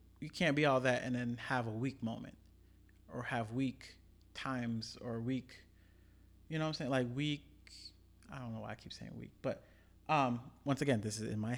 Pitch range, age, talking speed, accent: 95-130 Hz, 40-59, 205 wpm, American